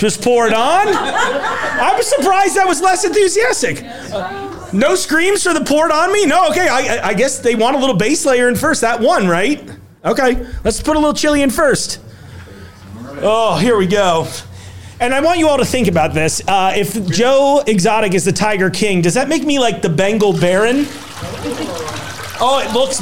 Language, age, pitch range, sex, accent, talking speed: English, 30-49, 165-235 Hz, male, American, 190 wpm